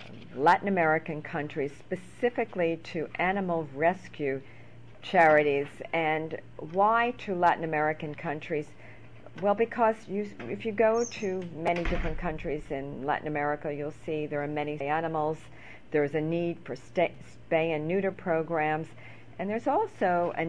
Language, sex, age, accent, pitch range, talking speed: English, female, 50-69, American, 145-180 Hz, 130 wpm